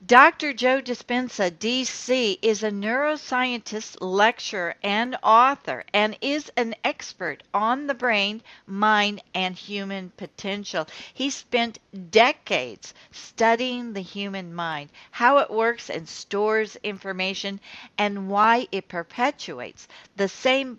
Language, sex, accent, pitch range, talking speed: English, female, American, 190-245 Hz, 115 wpm